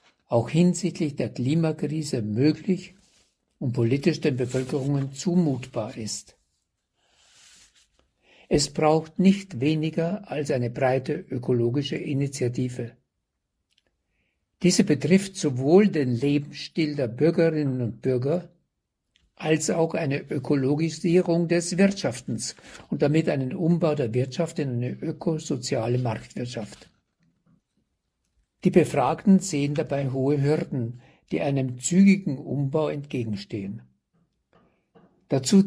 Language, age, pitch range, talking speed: German, 60-79, 130-165 Hz, 95 wpm